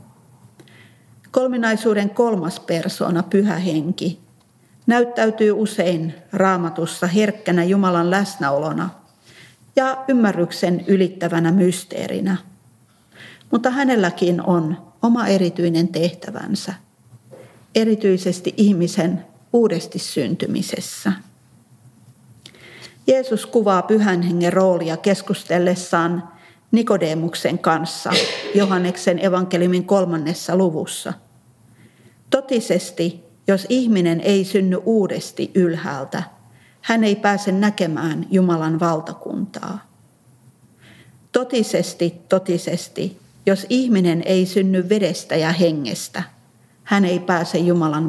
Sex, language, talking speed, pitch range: female, Finnish, 75 wpm, 170-200 Hz